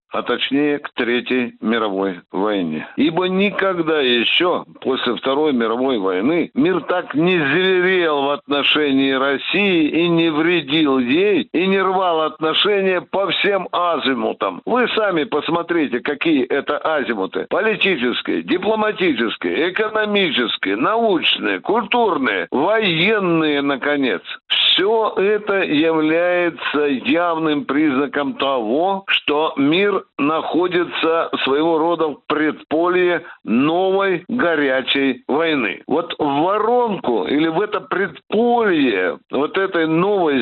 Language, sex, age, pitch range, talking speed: Russian, male, 60-79, 150-210 Hz, 105 wpm